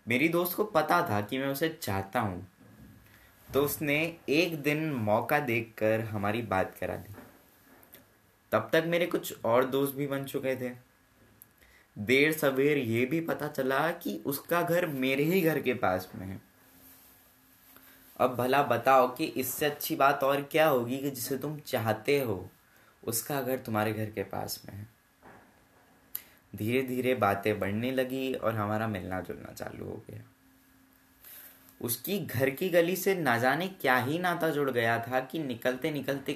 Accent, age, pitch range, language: native, 20-39, 105-145 Hz, Hindi